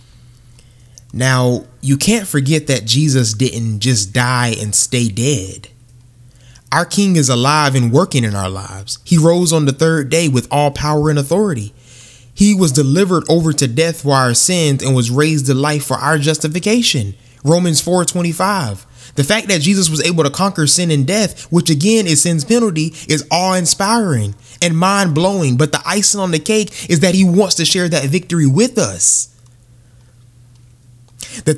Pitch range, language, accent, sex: 125-190 Hz, English, American, male